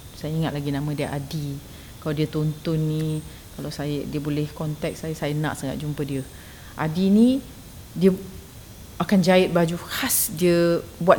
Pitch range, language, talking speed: 155-215 Hz, Malay, 160 wpm